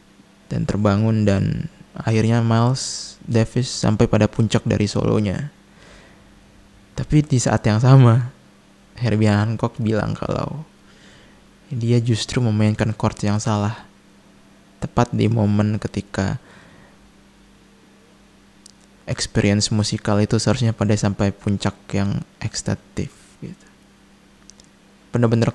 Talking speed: 95 wpm